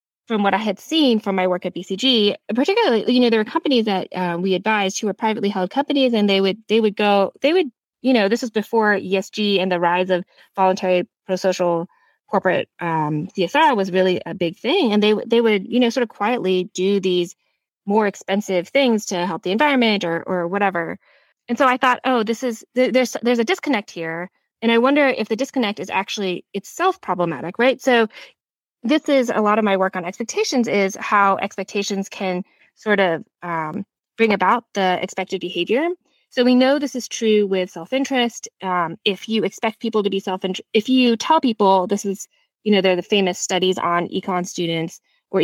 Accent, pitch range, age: American, 185-235 Hz, 20-39